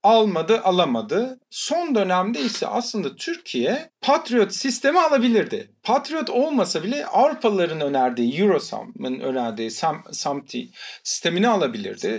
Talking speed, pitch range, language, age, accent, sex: 100 wpm, 150-225 Hz, Turkish, 40-59, native, male